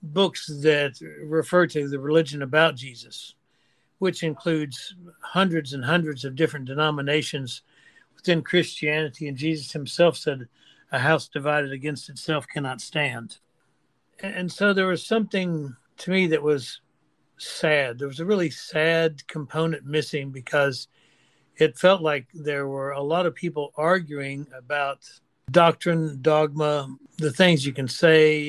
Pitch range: 140-165 Hz